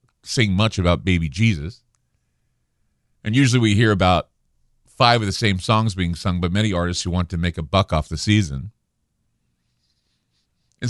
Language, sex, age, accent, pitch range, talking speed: English, male, 40-59, American, 90-115 Hz, 165 wpm